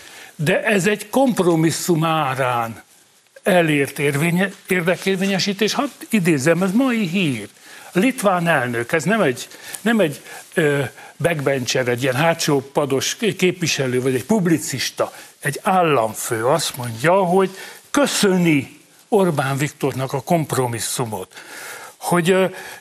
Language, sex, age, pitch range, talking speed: Hungarian, male, 60-79, 150-200 Hz, 110 wpm